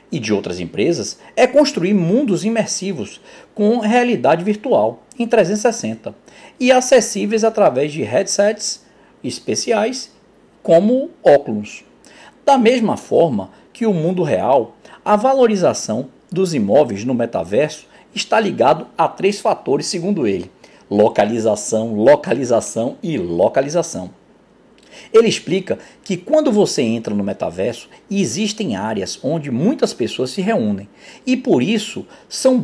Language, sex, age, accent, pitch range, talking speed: Portuguese, male, 50-69, Brazilian, 185-245 Hz, 120 wpm